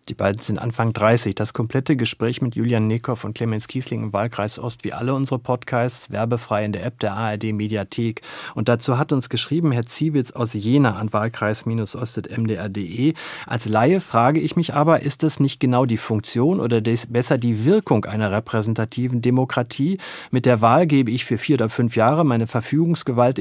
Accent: German